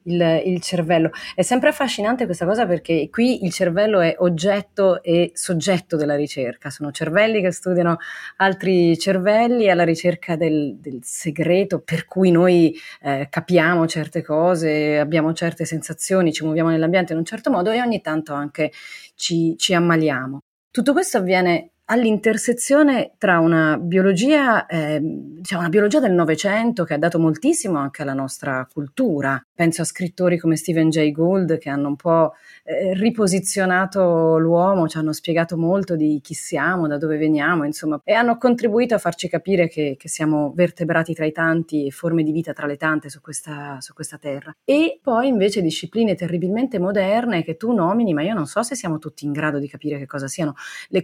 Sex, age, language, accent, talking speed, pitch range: female, 30-49, Italian, native, 170 wpm, 155-195 Hz